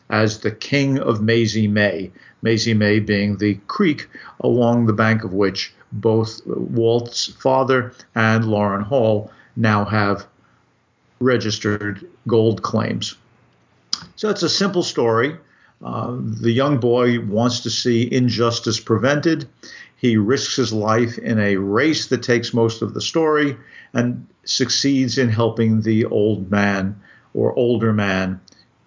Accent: American